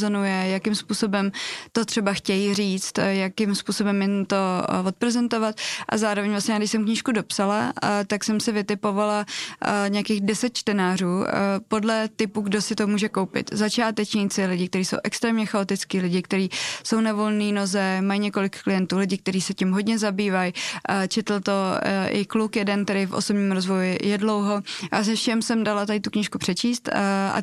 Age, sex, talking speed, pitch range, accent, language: 20-39, female, 160 wpm, 195-215 Hz, native, Czech